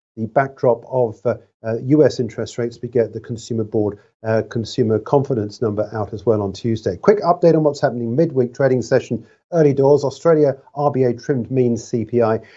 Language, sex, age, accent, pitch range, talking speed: English, male, 50-69, British, 115-140 Hz, 175 wpm